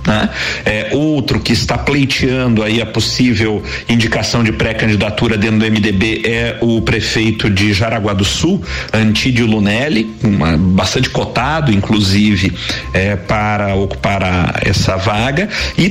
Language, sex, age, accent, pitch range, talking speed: Portuguese, male, 50-69, Brazilian, 110-130 Hz, 130 wpm